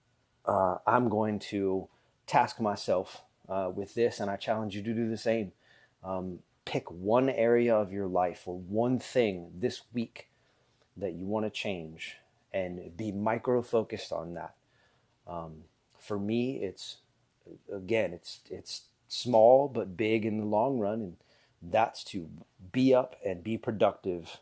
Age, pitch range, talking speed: 30-49, 95-115 Hz, 150 wpm